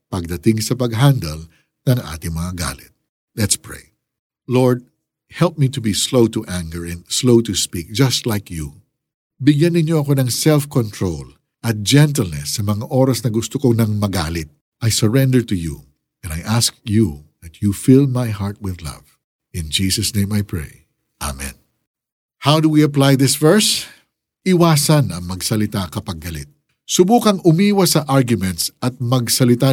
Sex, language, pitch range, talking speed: male, Filipino, 100-165 Hz, 155 wpm